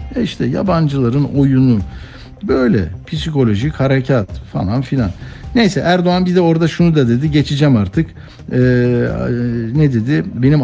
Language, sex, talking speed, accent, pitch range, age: Turkish, male, 125 wpm, native, 115-150 Hz, 60-79